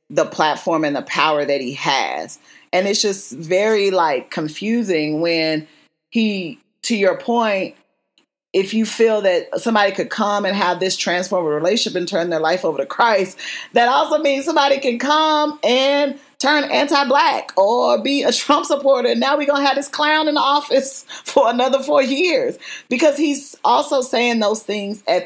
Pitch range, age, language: 170-275 Hz, 30-49, English